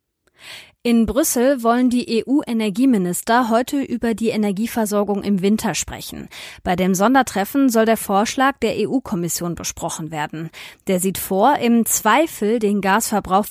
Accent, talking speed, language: German, 130 wpm, German